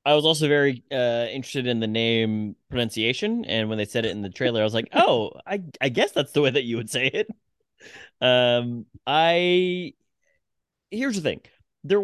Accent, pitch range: American, 110-170 Hz